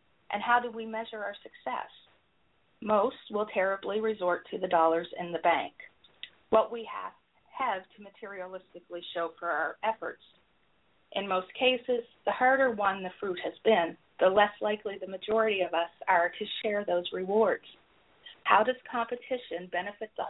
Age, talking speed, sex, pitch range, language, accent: 40-59, 155 wpm, female, 180-230 Hz, English, American